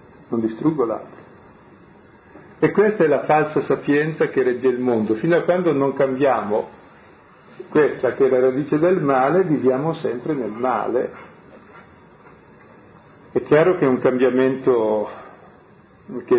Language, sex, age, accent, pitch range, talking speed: Italian, male, 50-69, native, 120-155 Hz, 130 wpm